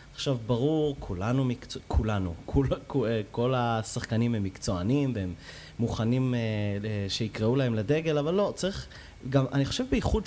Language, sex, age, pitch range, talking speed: Hebrew, male, 30-49, 110-145 Hz, 125 wpm